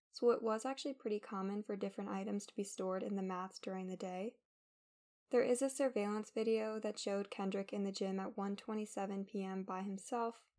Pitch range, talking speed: 195-225 Hz, 185 wpm